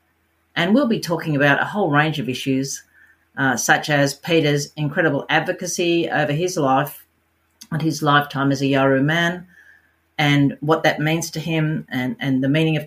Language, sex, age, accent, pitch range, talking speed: English, female, 50-69, Australian, 140-170 Hz, 175 wpm